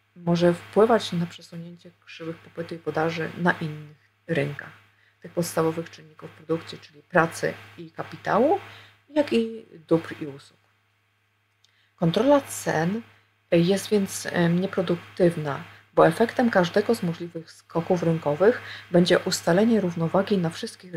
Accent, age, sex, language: native, 30-49, female, Polish